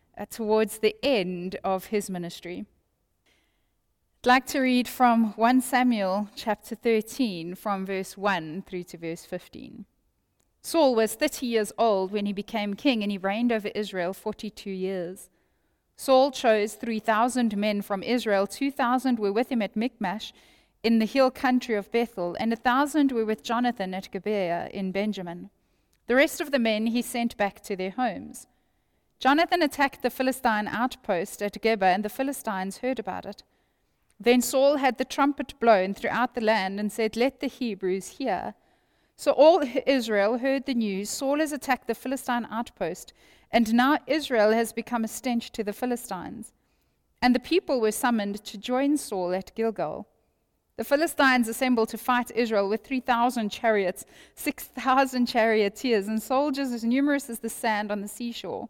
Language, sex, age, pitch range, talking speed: English, female, 10-29, 205-255 Hz, 160 wpm